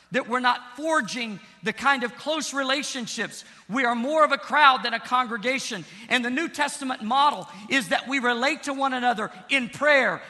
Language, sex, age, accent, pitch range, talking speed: English, male, 50-69, American, 170-245 Hz, 185 wpm